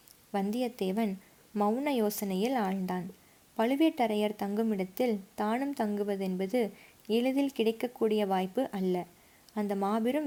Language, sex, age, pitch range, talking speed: Tamil, female, 20-39, 200-235 Hz, 90 wpm